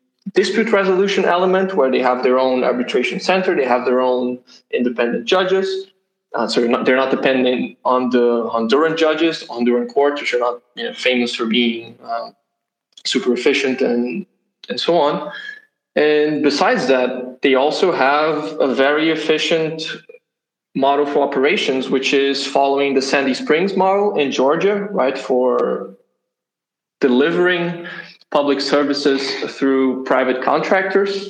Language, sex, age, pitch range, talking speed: English, male, 20-39, 130-180 Hz, 140 wpm